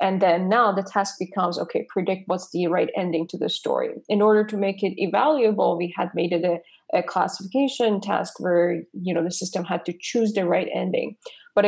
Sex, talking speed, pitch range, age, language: female, 210 wpm, 175-220 Hz, 20-39, English